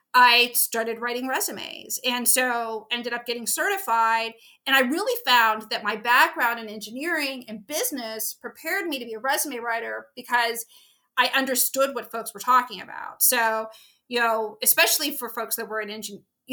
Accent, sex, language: American, female, English